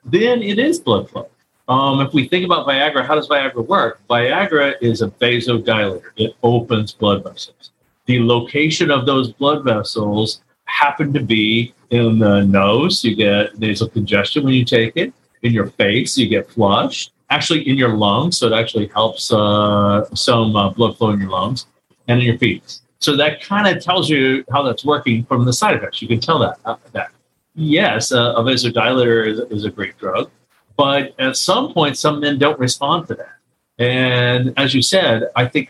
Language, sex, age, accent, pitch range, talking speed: English, male, 40-59, American, 110-140 Hz, 185 wpm